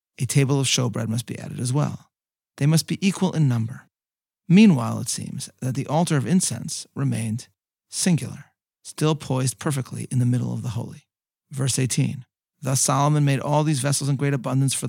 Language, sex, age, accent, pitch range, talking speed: English, male, 40-59, American, 125-150 Hz, 185 wpm